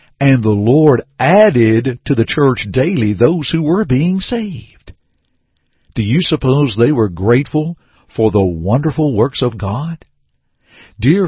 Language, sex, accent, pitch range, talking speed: English, male, American, 110-160 Hz, 140 wpm